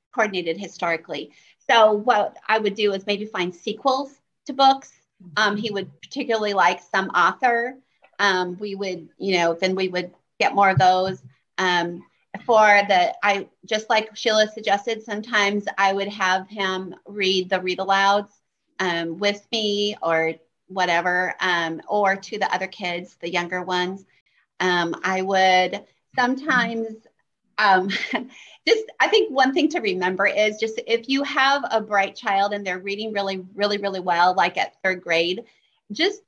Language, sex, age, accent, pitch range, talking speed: English, female, 30-49, American, 185-235 Hz, 155 wpm